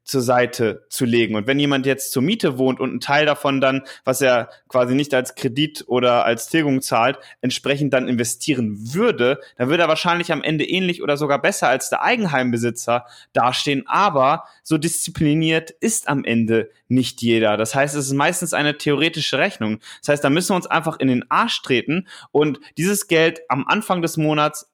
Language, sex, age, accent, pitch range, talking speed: German, male, 20-39, German, 125-150 Hz, 190 wpm